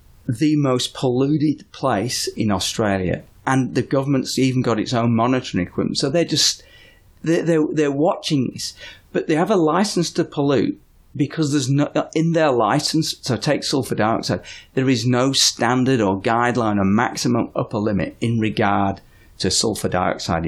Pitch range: 95-135 Hz